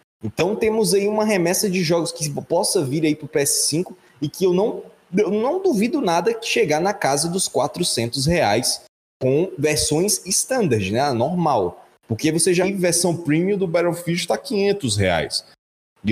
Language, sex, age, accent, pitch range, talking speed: Portuguese, male, 20-39, Brazilian, 140-205 Hz, 170 wpm